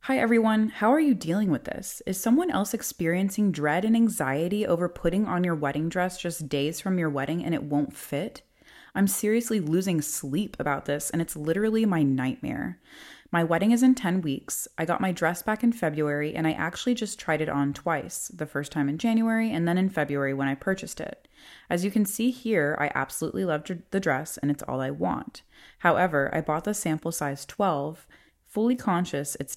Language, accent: English, American